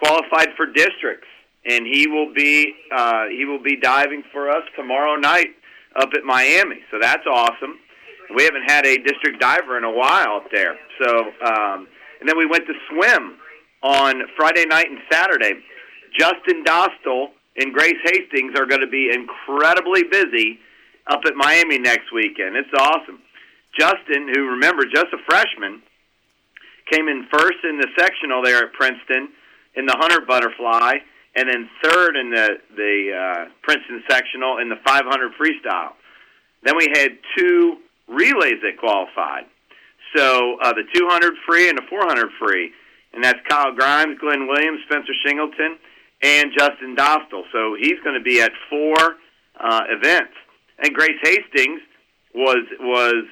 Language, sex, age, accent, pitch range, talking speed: English, male, 40-59, American, 130-155 Hz, 155 wpm